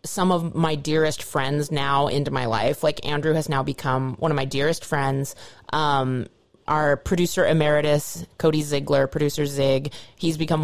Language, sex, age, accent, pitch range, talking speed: English, female, 30-49, American, 145-185 Hz, 165 wpm